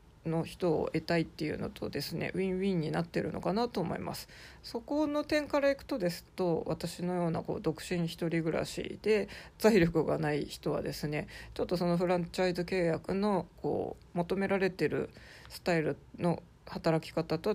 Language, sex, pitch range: Japanese, female, 160-210 Hz